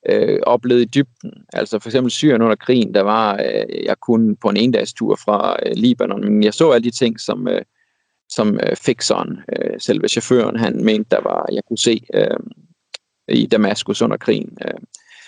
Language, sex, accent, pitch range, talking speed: Danish, male, native, 115-135 Hz, 195 wpm